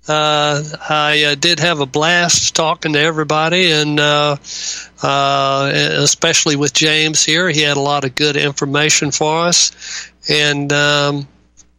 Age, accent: 60-79, American